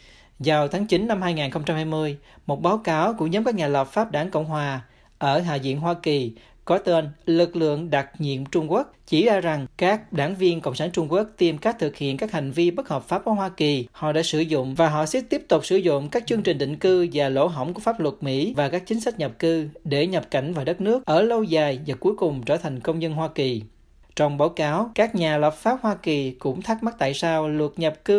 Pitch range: 150-195 Hz